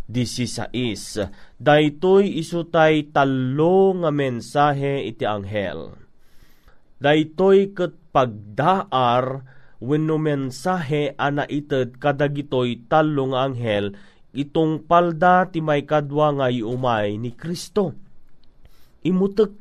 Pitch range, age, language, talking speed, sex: 130-165 Hz, 30-49, Filipino, 85 wpm, male